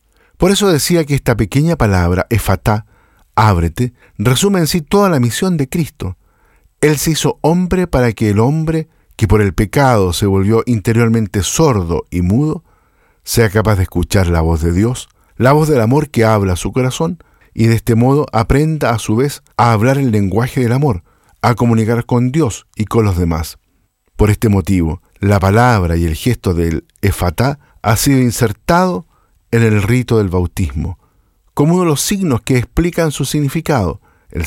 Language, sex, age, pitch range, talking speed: Spanish, male, 50-69, 95-135 Hz, 180 wpm